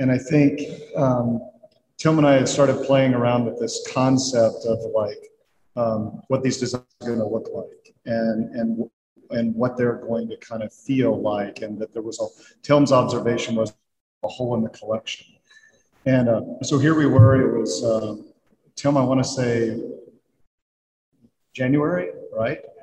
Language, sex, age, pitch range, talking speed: English, male, 40-59, 120-150 Hz, 170 wpm